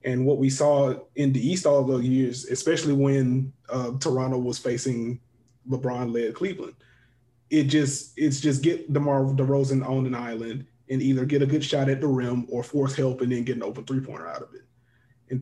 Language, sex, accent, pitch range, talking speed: English, male, American, 125-145 Hz, 195 wpm